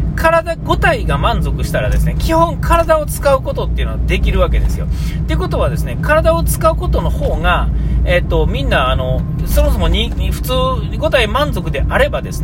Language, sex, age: Japanese, male, 40-59